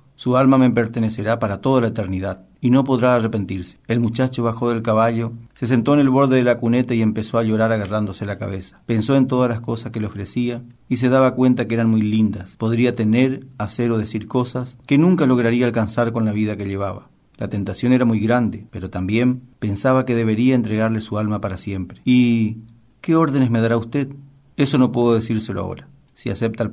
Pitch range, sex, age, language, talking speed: 110-130 Hz, male, 40-59, Spanish, 205 wpm